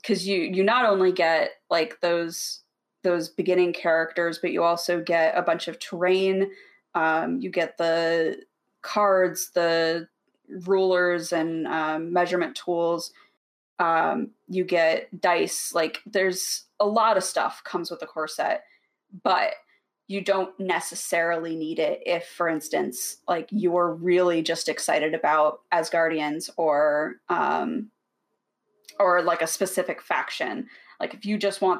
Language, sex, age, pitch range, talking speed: English, female, 20-39, 165-200 Hz, 140 wpm